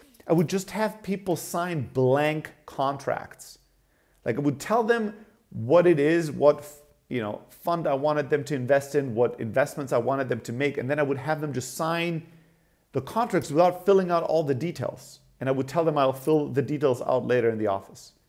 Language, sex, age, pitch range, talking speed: English, male, 40-59, 135-175 Hz, 205 wpm